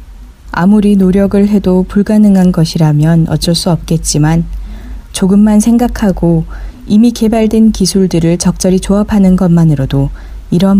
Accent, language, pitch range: native, Korean, 155-205 Hz